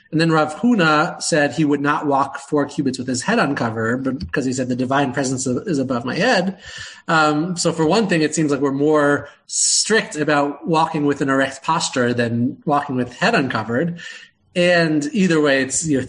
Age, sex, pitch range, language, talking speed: 30-49, male, 140-180 Hz, English, 200 wpm